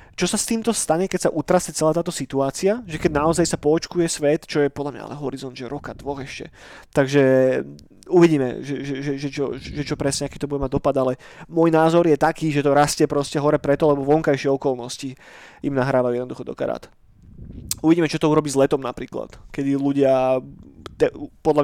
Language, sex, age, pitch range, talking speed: Slovak, male, 30-49, 140-175 Hz, 200 wpm